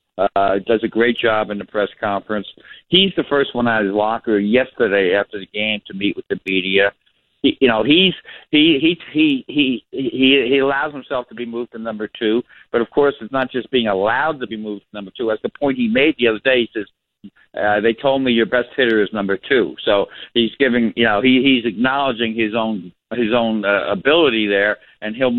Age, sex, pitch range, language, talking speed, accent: 60-79, male, 110-135 Hz, English, 220 wpm, American